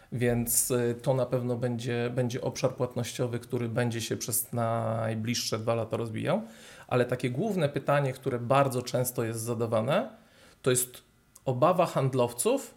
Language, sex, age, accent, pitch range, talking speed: Polish, male, 40-59, native, 120-140 Hz, 135 wpm